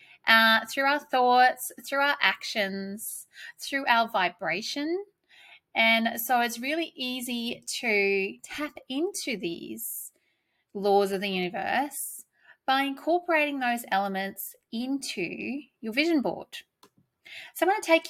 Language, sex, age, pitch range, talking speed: English, female, 20-39, 210-275 Hz, 115 wpm